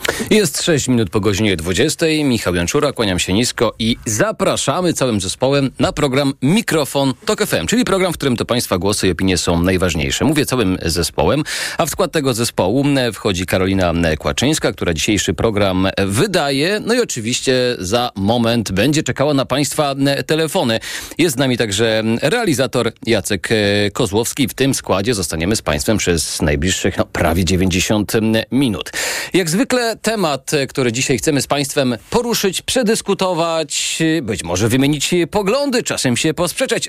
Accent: native